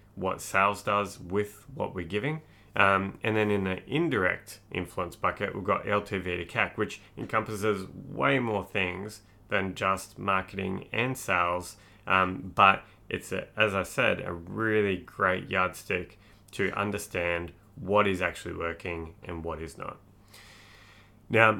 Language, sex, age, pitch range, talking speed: English, male, 30-49, 90-105 Hz, 140 wpm